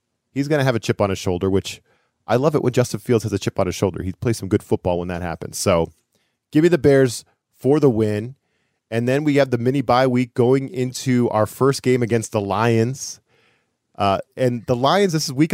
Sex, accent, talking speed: male, American, 230 wpm